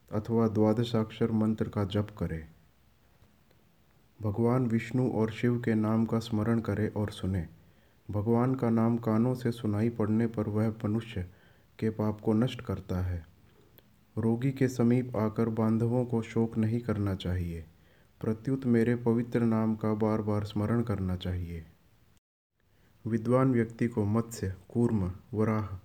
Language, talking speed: Hindi, 135 wpm